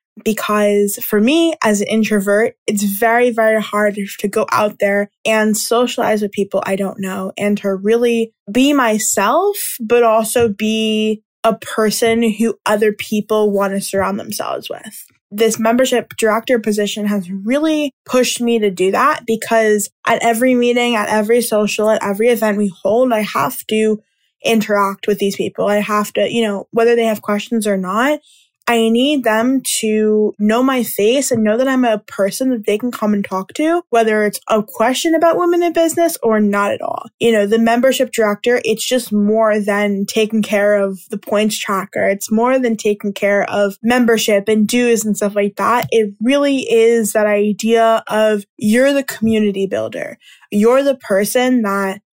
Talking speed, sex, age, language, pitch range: 175 wpm, female, 10-29, English, 210-240 Hz